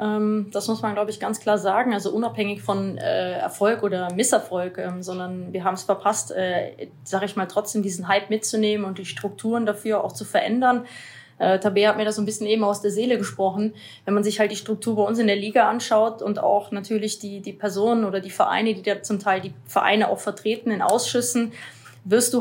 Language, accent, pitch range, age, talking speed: German, German, 205-230 Hz, 20-39, 210 wpm